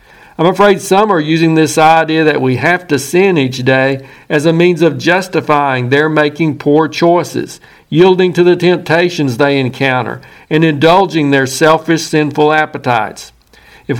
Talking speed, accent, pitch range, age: 155 wpm, American, 140-170 Hz, 60-79